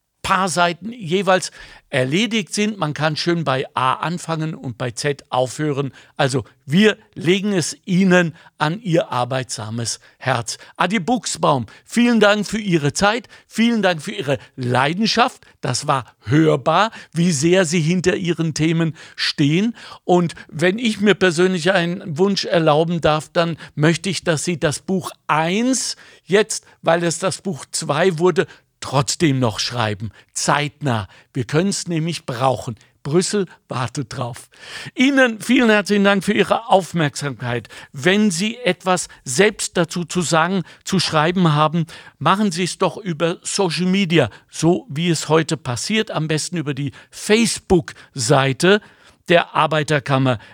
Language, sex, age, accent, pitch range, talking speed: German, male, 60-79, German, 145-190 Hz, 140 wpm